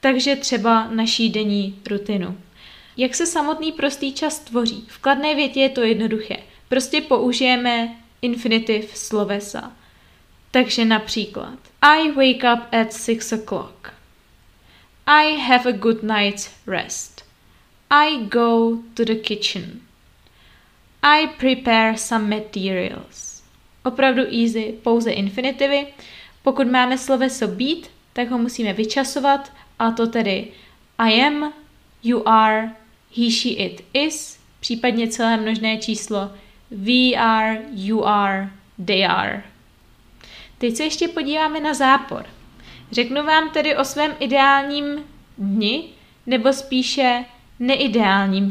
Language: Czech